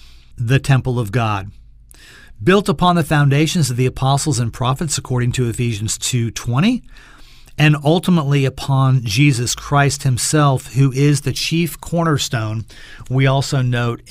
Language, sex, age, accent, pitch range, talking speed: English, male, 40-59, American, 115-140 Hz, 130 wpm